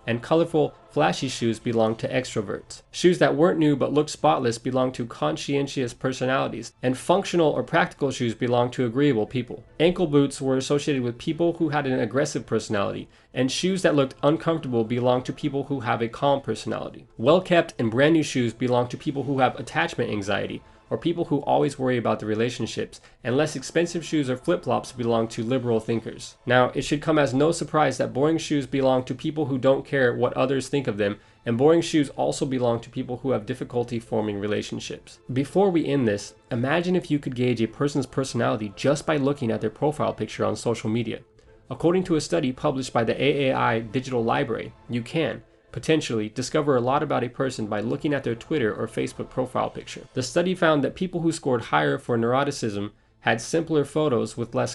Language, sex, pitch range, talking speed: English, male, 115-150 Hz, 195 wpm